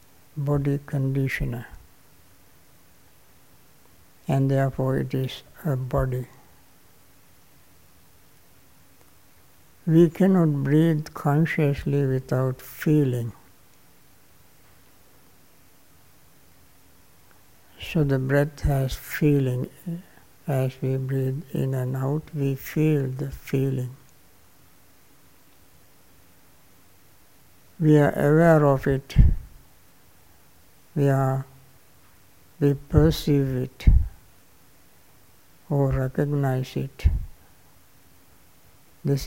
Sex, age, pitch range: male, 60-79, 95-145 Hz